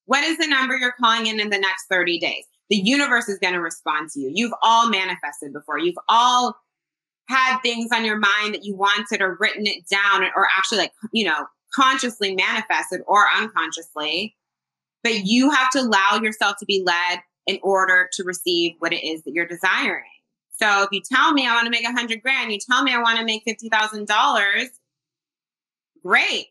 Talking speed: 195 wpm